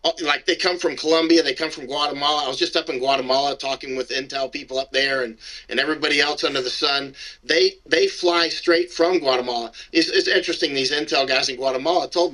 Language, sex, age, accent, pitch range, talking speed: English, male, 50-69, American, 135-185 Hz, 210 wpm